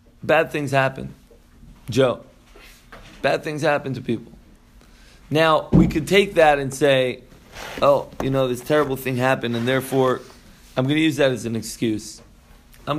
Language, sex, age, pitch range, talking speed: English, male, 20-39, 120-155 Hz, 155 wpm